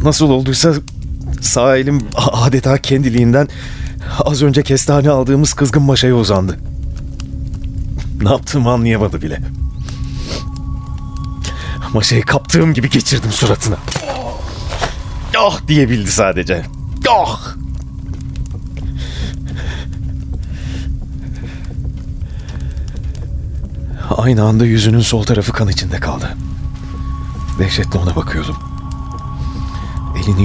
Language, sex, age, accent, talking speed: Turkish, male, 40-59, native, 75 wpm